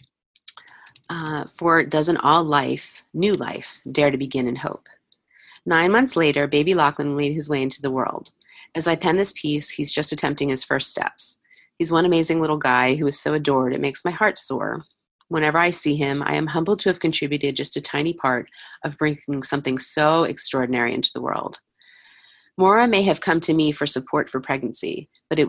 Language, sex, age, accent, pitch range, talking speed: English, female, 30-49, American, 135-165 Hz, 195 wpm